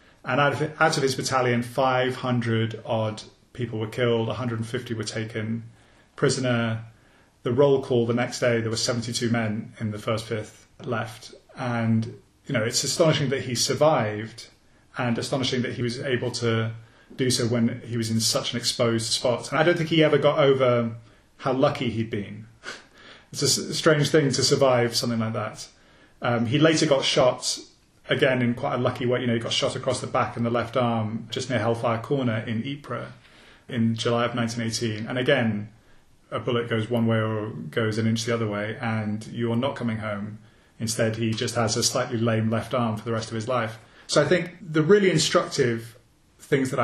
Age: 30-49